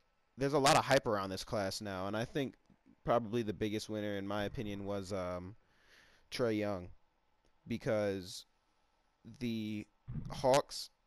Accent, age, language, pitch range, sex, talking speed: American, 20-39, English, 100-120 Hz, male, 140 wpm